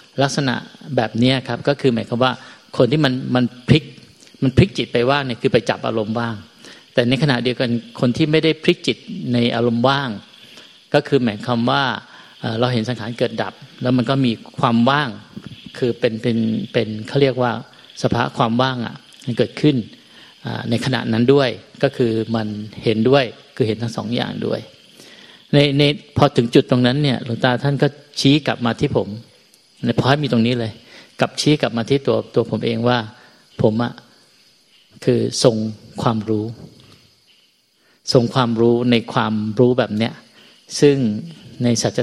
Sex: male